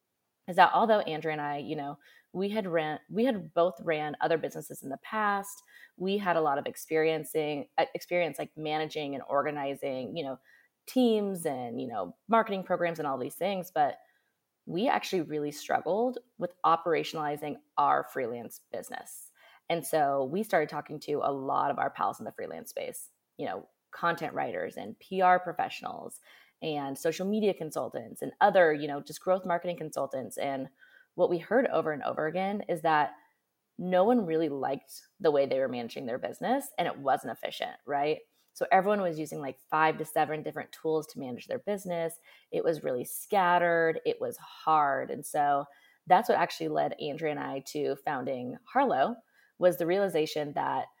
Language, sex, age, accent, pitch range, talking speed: English, female, 20-39, American, 150-205 Hz, 175 wpm